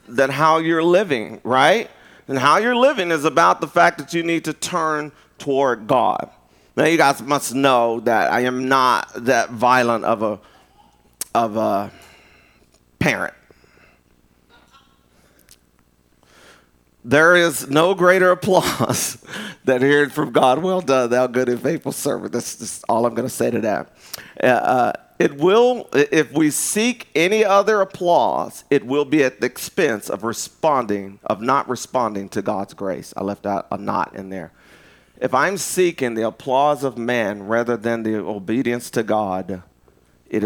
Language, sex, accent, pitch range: English, male, American, 105-145 Hz